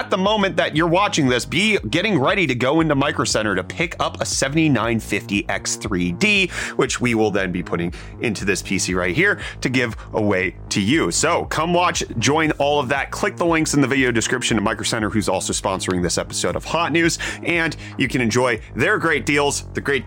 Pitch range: 115-165 Hz